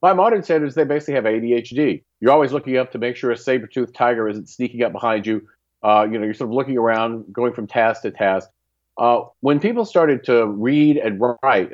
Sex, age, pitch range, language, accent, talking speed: male, 40-59, 105-140 Hz, English, American, 220 wpm